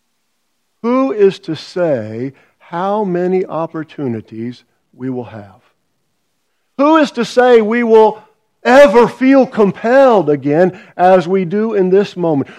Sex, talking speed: male, 125 wpm